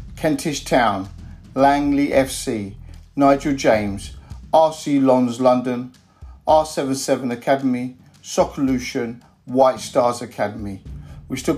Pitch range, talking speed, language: 125-145 Hz, 90 wpm, English